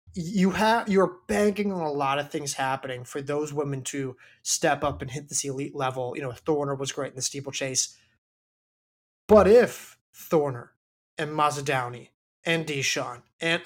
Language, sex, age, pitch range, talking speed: English, male, 20-39, 140-200 Hz, 165 wpm